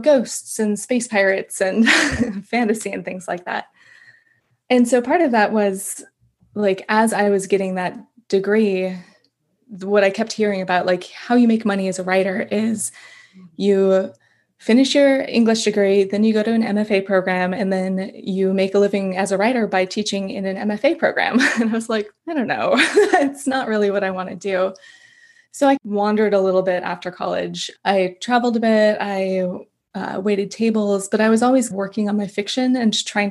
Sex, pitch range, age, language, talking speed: female, 190-230 Hz, 20-39, English, 190 wpm